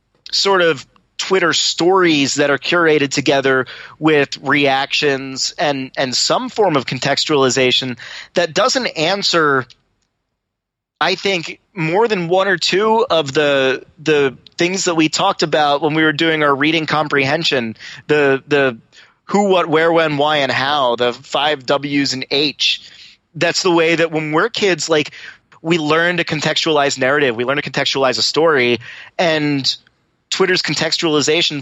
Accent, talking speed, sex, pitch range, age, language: American, 145 wpm, male, 140-165 Hz, 30-49, English